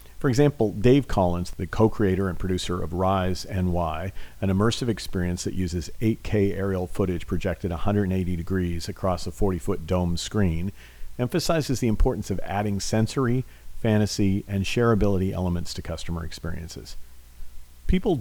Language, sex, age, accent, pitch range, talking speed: English, male, 50-69, American, 85-110 Hz, 135 wpm